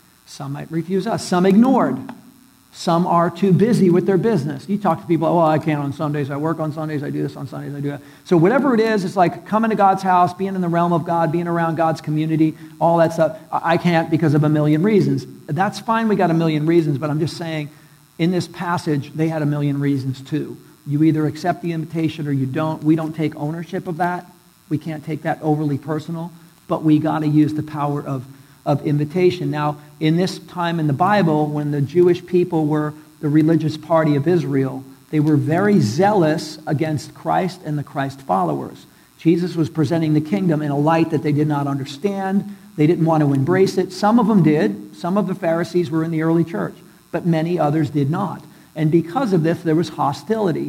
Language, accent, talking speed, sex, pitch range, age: English, American, 220 wpm, male, 150-175 Hz, 50-69